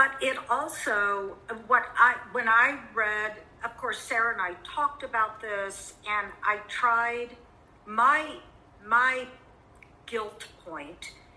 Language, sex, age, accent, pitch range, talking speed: English, female, 50-69, American, 180-230 Hz, 120 wpm